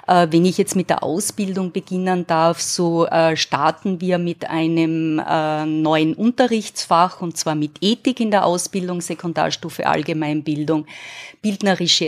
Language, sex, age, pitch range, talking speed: German, female, 30-49, 160-195 Hz, 125 wpm